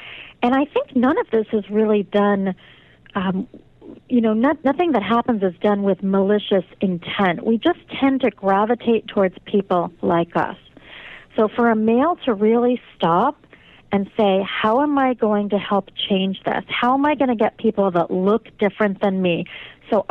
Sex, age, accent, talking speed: female, 40-59, American, 175 wpm